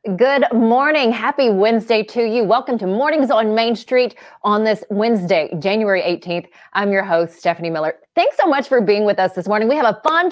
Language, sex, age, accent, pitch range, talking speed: English, female, 30-49, American, 185-245 Hz, 205 wpm